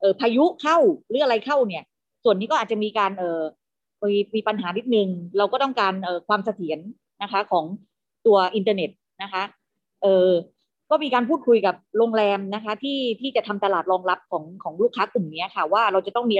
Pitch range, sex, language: 190-240 Hz, female, Thai